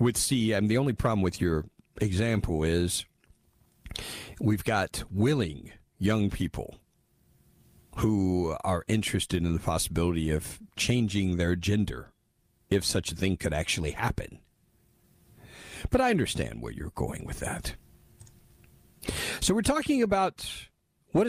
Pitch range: 90-125 Hz